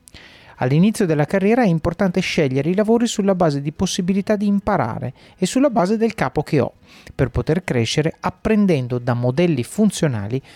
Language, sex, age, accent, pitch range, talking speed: Italian, male, 40-59, native, 135-200 Hz, 160 wpm